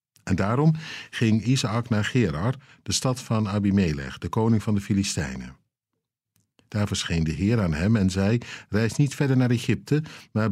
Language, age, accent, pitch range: Dutch, 50-69, Dutch, 95-125 Hz